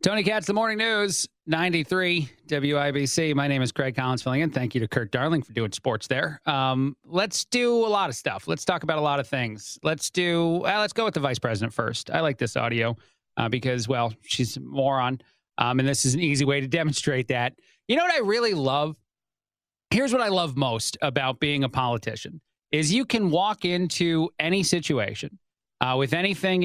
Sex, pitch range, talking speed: male, 135-185 Hz, 205 wpm